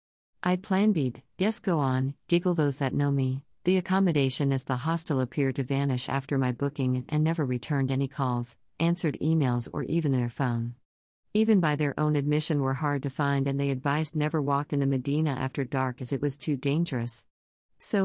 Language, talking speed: English, 195 wpm